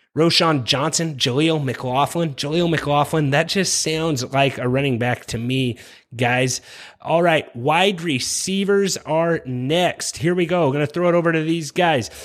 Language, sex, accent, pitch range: English, male, American, 130-165 Hz